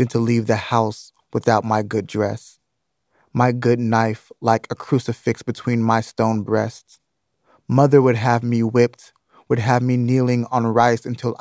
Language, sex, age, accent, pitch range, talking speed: English, male, 20-39, American, 120-135 Hz, 160 wpm